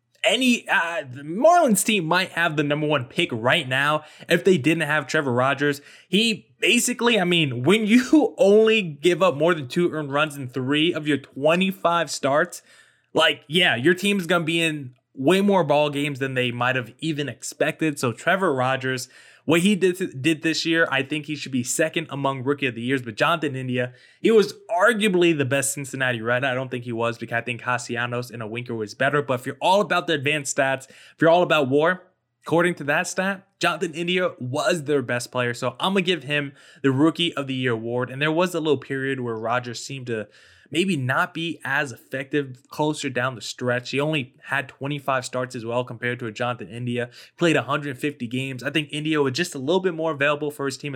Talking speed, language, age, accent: 215 wpm, English, 20-39, American